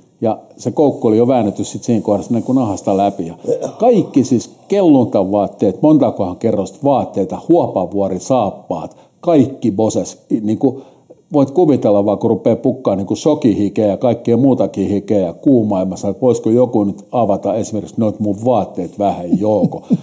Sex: male